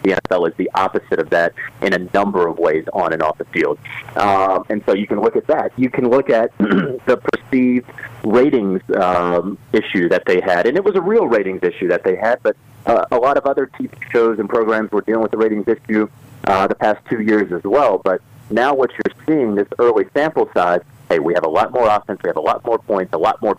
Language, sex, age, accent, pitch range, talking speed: English, male, 30-49, American, 100-130 Hz, 240 wpm